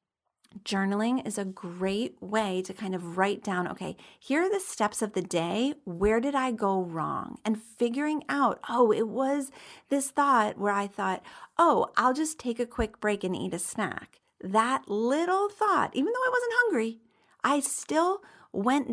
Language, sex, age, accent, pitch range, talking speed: English, female, 40-59, American, 195-270 Hz, 180 wpm